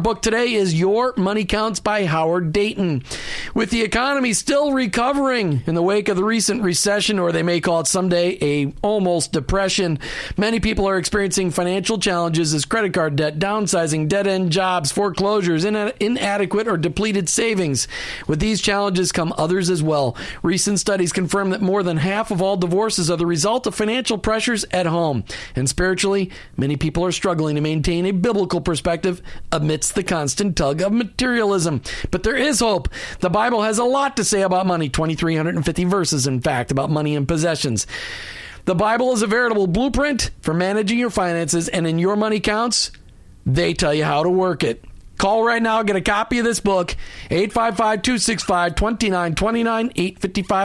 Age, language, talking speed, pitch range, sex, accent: 40-59, English, 170 wpm, 165-215 Hz, male, American